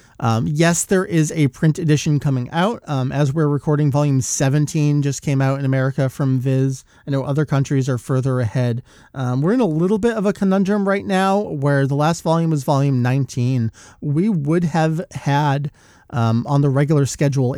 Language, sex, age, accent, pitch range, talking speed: English, male, 30-49, American, 125-155 Hz, 190 wpm